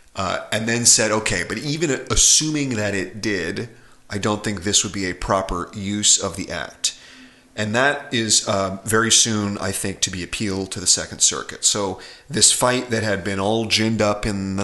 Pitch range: 95-110 Hz